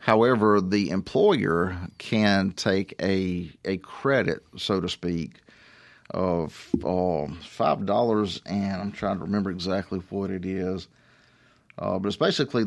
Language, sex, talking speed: English, male, 130 wpm